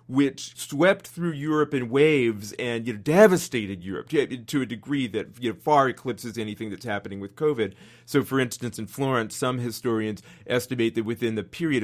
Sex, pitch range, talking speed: male, 115-155 Hz, 160 wpm